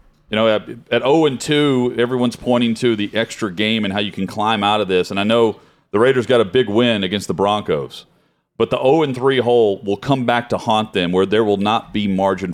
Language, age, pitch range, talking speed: English, 40-59, 95-125 Hz, 220 wpm